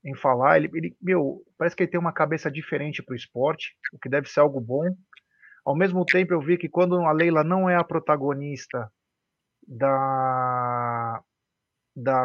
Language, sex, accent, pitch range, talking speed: Portuguese, male, Brazilian, 135-175 Hz, 175 wpm